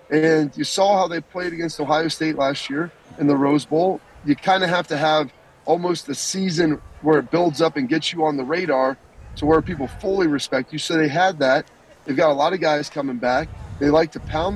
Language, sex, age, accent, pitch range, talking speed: English, male, 30-49, American, 150-180 Hz, 230 wpm